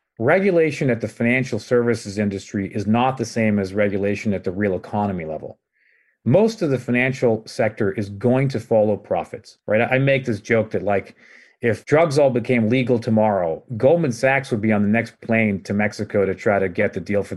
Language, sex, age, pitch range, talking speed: English, male, 40-59, 105-125 Hz, 195 wpm